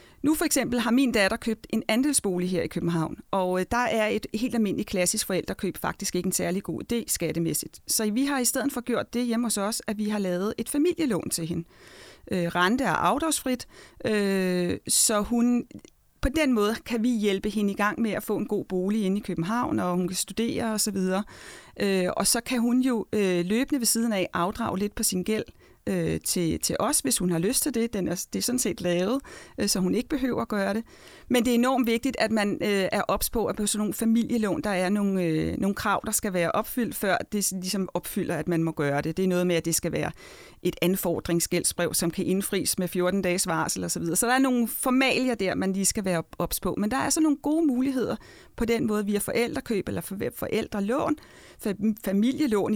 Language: Danish